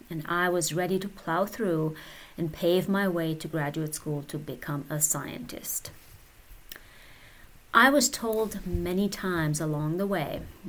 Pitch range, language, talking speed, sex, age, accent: 155-195 Hz, English, 145 wpm, female, 30-49, American